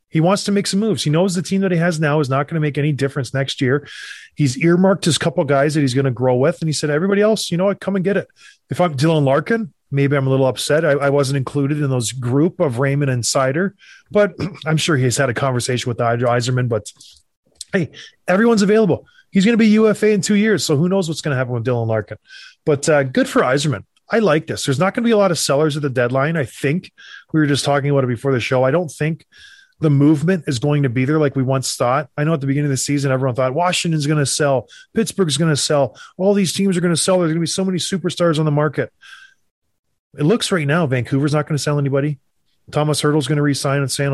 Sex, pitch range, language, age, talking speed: male, 140-180 Hz, English, 30-49, 265 wpm